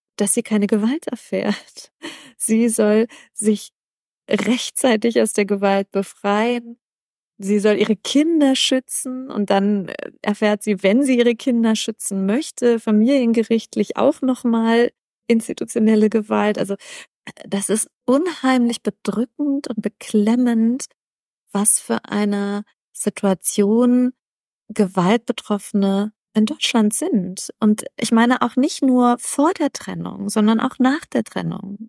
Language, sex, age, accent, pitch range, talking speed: German, female, 30-49, German, 195-240 Hz, 115 wpm